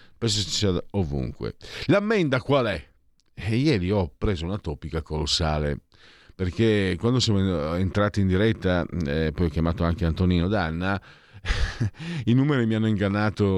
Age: 50-69